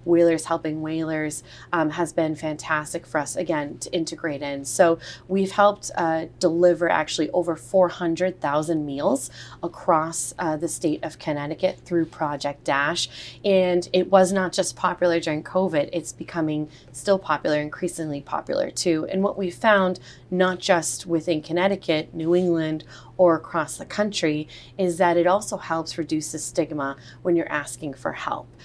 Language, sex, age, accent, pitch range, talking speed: English, female, 30-49, American, 155-175 Hz, 155 wpm